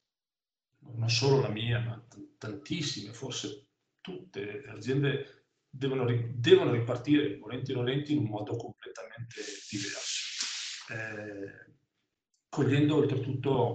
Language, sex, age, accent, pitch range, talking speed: Italian, male, 40-59, native, 115-140 Hz, 105 wpm